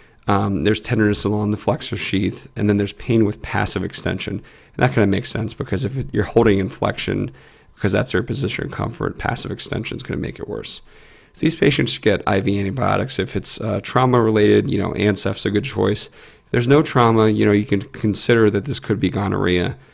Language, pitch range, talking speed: English, 95-115 Hz, 215 wpm